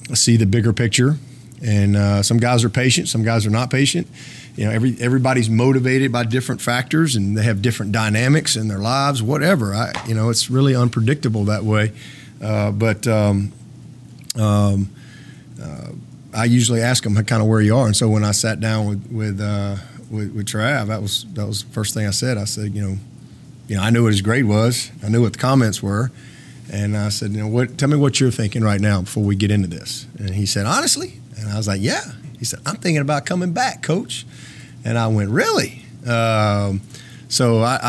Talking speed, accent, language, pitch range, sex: 210 wpm, American, English, 105-125 Hz, male